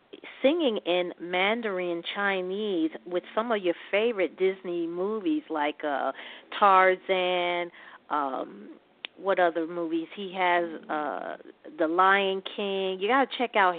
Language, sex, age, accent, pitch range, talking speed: English, female, 40-59, American, 170-195 Hz, 125 wpm